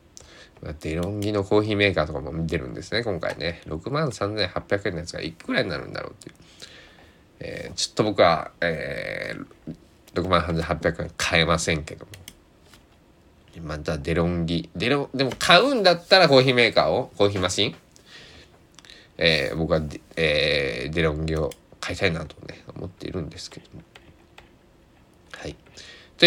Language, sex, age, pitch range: Japanese, male, 20-39, 85-135 Hz